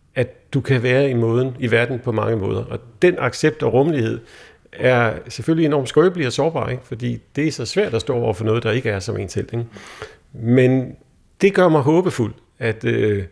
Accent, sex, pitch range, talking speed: native, male, 115-150 Hz, 205 wpm